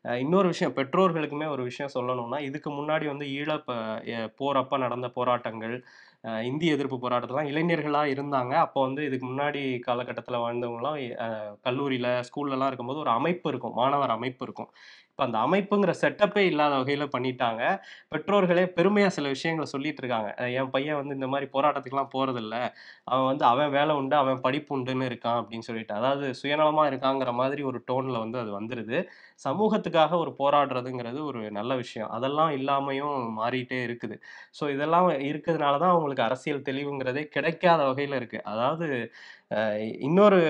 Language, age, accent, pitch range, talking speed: Tamil, 20-39, native, 125-155 Hz, 140 wpm